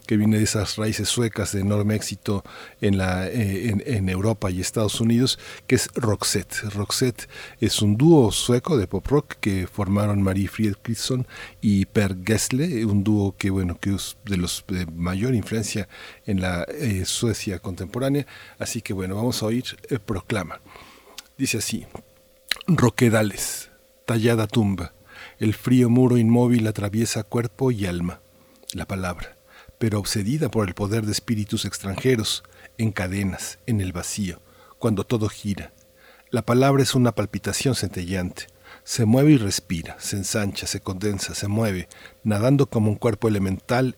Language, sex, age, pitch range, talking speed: Spanish, male, 50-69, 95-115 Hz, 150 wpm